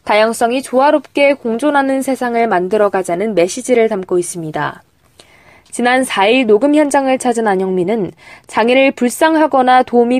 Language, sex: Korean, female